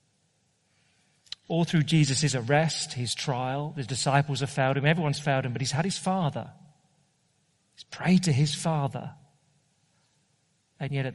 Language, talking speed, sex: English, 145 wpm, male